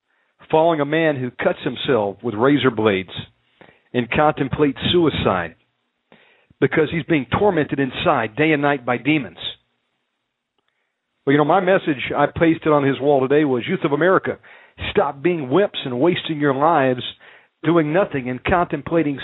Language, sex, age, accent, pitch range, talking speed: English, male, 50-69, American, 130-170 Hz, 150 wpm